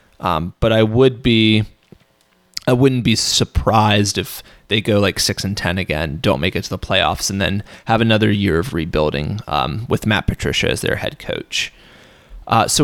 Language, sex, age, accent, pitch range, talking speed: English, male, 20-39, American, 100-115 Hz, 185 wpm